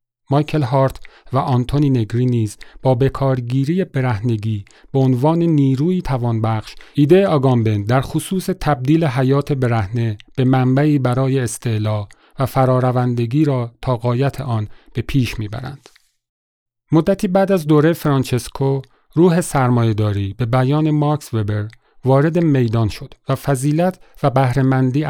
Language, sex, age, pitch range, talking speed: Persian, male, 40-59, 120-140 Hz, 120 wpm